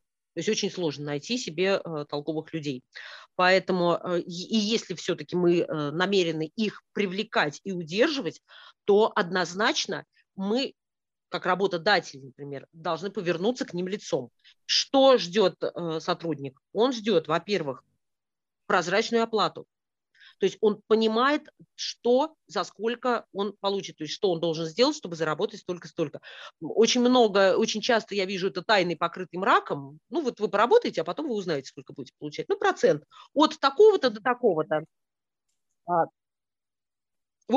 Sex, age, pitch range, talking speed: female, 30-49, 170-230 Hz, 135 wpm